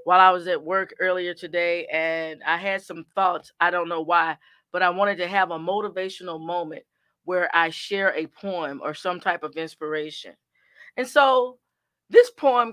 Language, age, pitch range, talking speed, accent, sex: English, 40-59, 170-220 Hz, 180 wpm, American, female